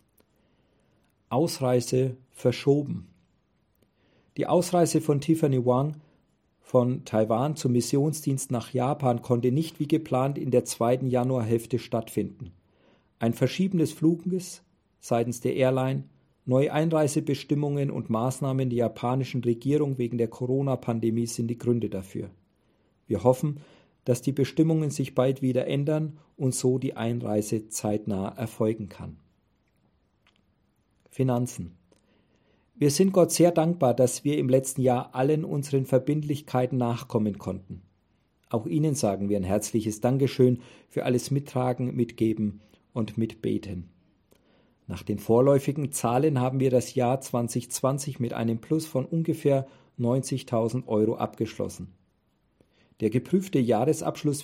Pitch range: 110-140 Hz